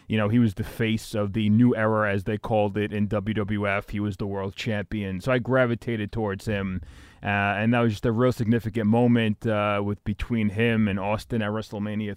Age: 30-49